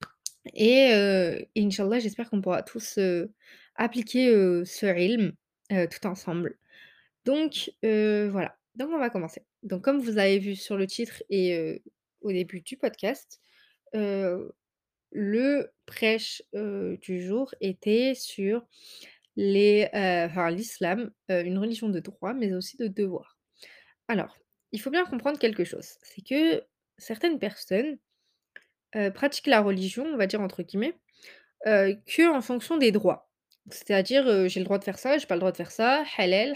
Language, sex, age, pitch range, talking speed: French, female, 20-39, 195-255 Hz, 160 wpm